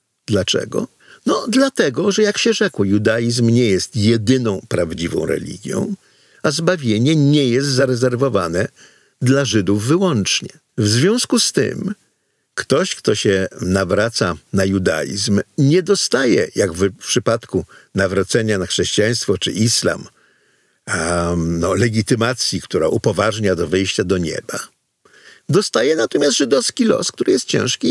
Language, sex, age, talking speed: Polish, male, 50-69, 120 wpm